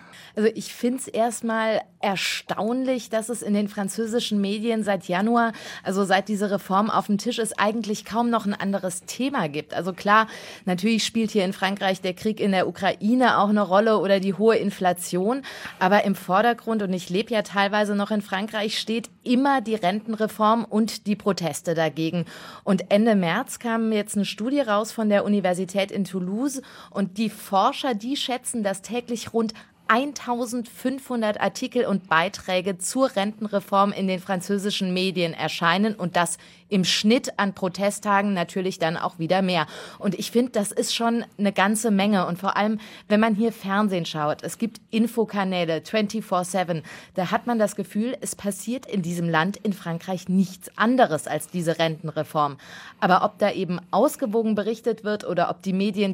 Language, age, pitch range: German, 30-49, 185-225 Hz